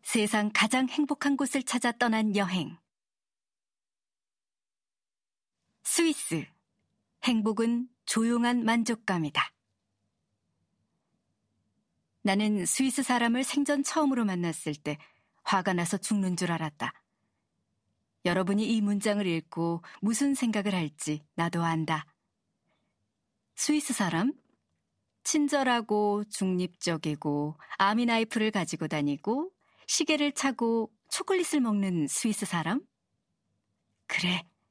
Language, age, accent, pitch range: Korean, 40-59, native, 170-245 Hz